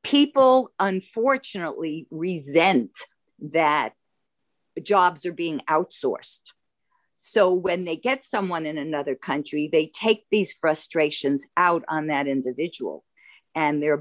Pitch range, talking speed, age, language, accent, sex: 155-245 Hz, 110 wpm, 50-69, English, American, female